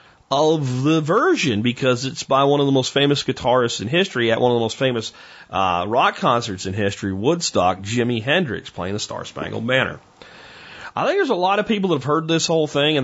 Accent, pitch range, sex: American, 115-150 Hz, male